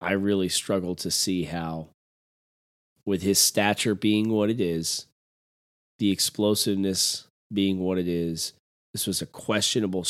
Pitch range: 90-120 Hz